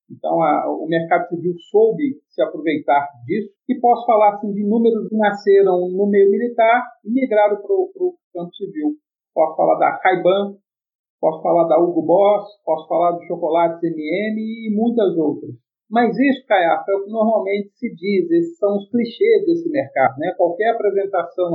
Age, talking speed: 50-69, 170 wpm